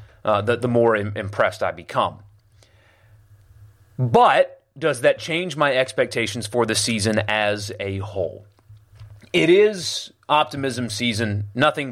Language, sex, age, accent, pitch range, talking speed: English, male, 30-49, American, 105-140 Hz, 120 wpm